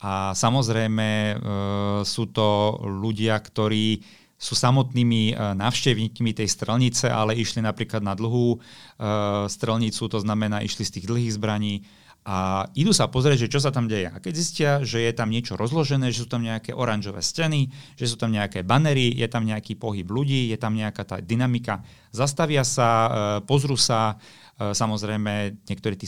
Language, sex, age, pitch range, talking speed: Slovak, male, 40-59, 105-125 Hz, 165 wpm